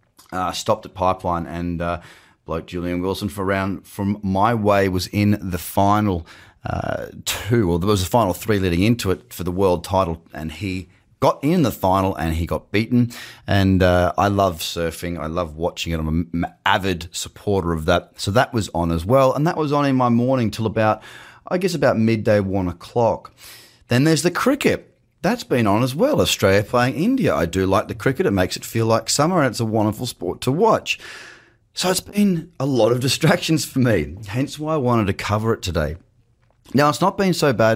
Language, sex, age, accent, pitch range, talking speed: English, male, 30-49, Australian, 90-120 Hz, 210 wpm